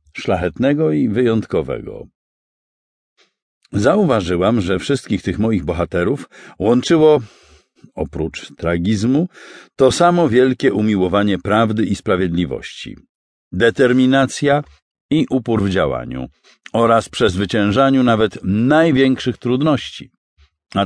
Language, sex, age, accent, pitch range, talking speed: Polish, male, 50-69, native, 95-130 Hz, 85 wpm